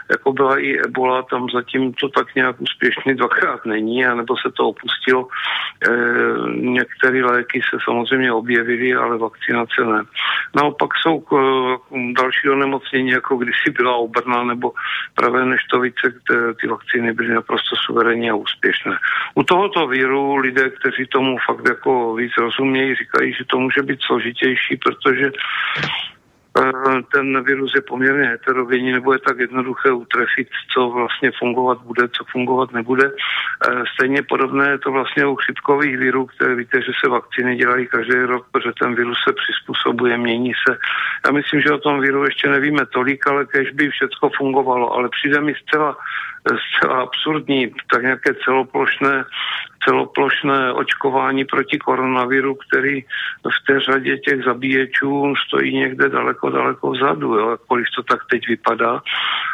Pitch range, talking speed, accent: 120-135 Hz, 145 wpm, native